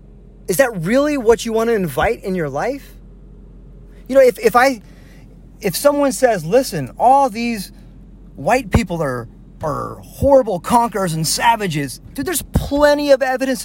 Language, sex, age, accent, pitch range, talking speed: English, male, 30-49, American, 185-265 Hz, 155 wpm